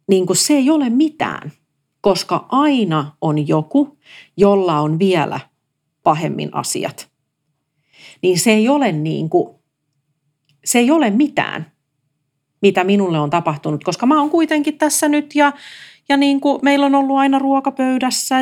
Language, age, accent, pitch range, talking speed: Finnish, 40-59, native, 150-250 Hz, 140 wpm